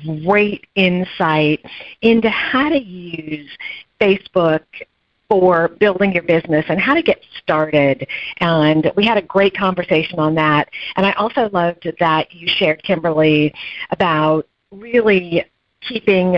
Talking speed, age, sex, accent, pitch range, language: 130 wpm, 50-69, female, American, 160-205 Hz, English